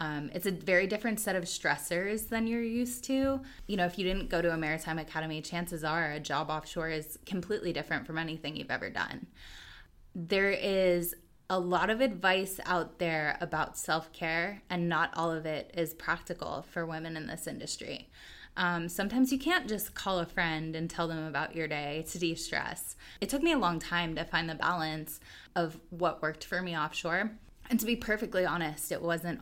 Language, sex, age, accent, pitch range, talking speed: English, female, 20-39, American, 160-210 Hz, 195 wpm